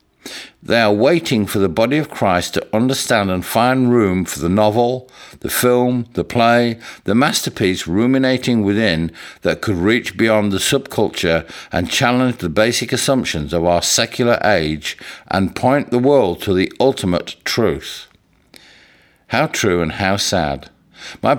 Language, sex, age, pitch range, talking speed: English, male, 60-79, 95-130 Hz, 150 wpm